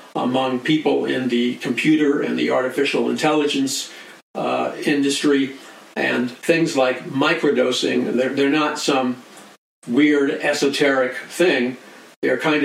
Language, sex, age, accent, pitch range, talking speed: English, male, 50-69, American, 125-145 Hz, 115 wpm